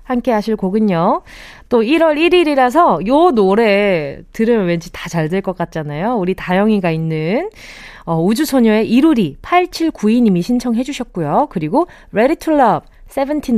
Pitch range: 180-285 Hz